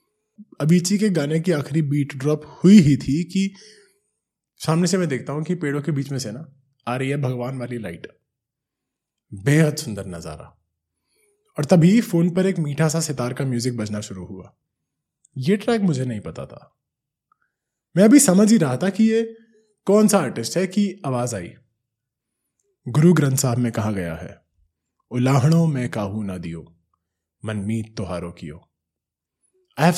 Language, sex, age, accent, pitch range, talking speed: Hindi, male, 20-39, native, 110-170 Hz, 160 wpm